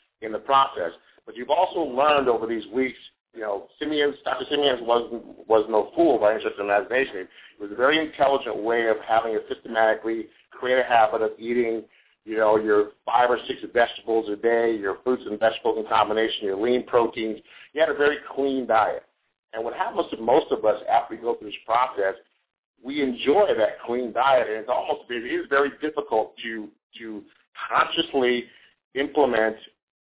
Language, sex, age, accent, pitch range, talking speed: English, male, 50-69, American, 110-135 Hz, 185 wpm